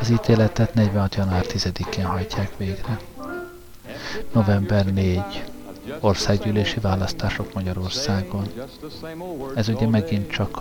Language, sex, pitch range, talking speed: Hungarian, male, 100-115 Hz, 90 wpm